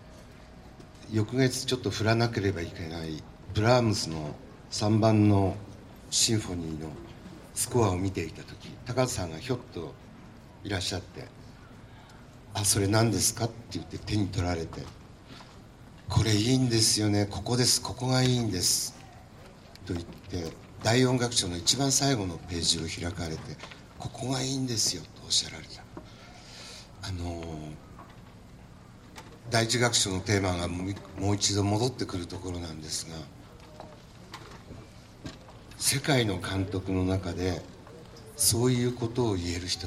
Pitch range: 90-120 Hz